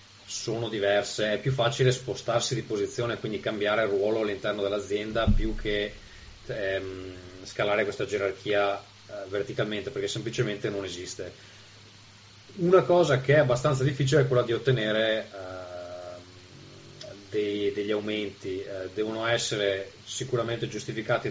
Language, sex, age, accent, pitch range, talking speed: Italian, male, 30-49, native, 100-115 Hz, 110 wpm